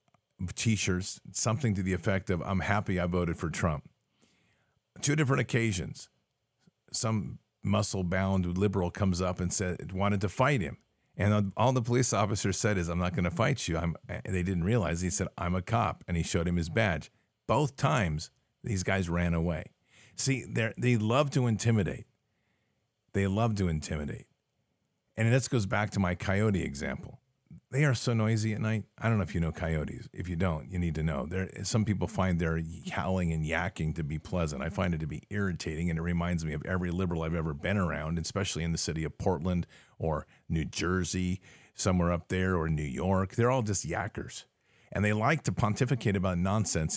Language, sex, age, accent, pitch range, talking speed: English, male, 50-69, American, 85-110 Hz, 195 wpm